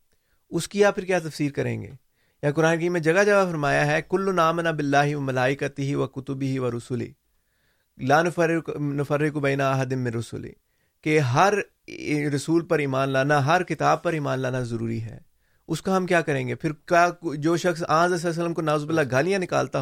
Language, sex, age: Urdu, male, 30-49